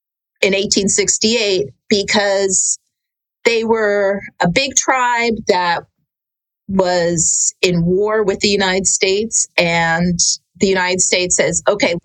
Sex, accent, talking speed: female, American, 110 wpm